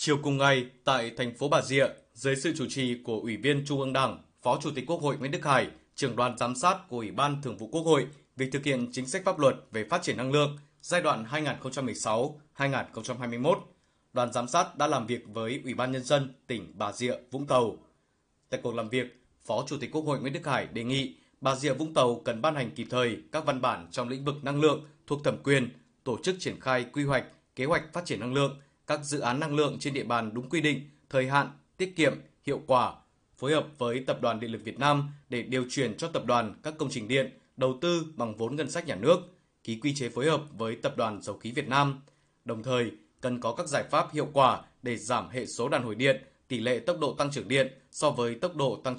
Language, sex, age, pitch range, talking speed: Vietnamese, male, 20-39, 125-145 Hz, 245 wpm